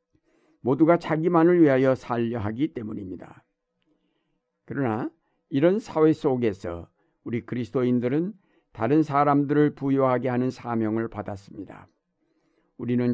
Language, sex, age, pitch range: Korean, male, 60-79, 115-150 Hz